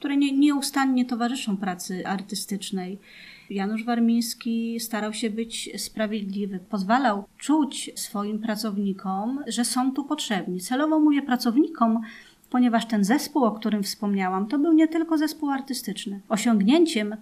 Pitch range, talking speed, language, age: 195-240 Hz, 120 wpm, Polish, 30-49